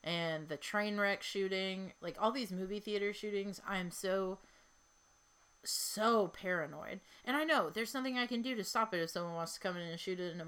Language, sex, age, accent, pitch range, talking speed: English, female, 30-49, American, 175-205 Hz, 220 wpm